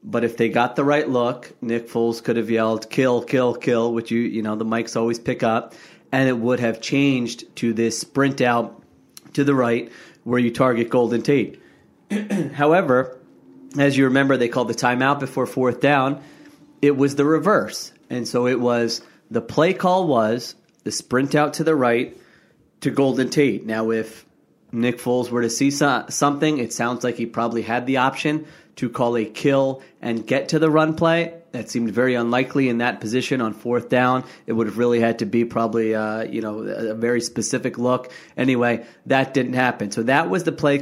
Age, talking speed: 30-49, 195 wpm